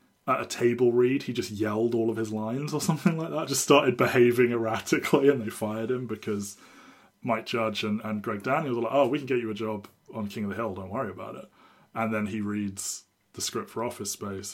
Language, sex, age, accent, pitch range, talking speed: English, male, 20-39, British, 105-125 Hz, 235 wpm